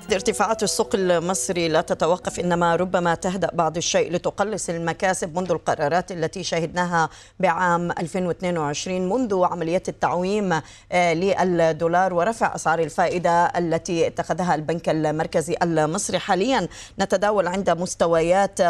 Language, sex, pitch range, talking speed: Arabic, female, 165-190 Hz, 110 wpm